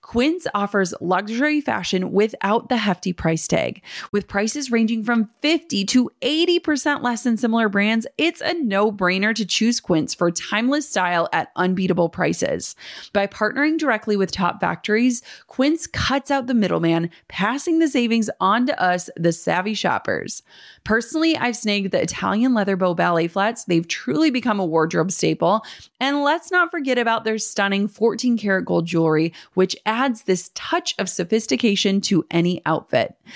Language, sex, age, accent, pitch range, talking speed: English, female, 30-49, American, 185-255 Hz, 155 wpm